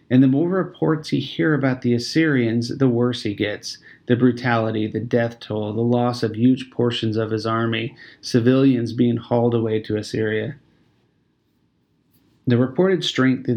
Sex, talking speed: male, 160 wpm